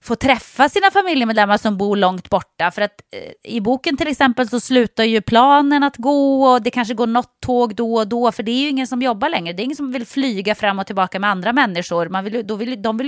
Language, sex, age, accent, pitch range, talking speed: English, female, 30-49, Swedish, 190-255 Hz, 260 wpm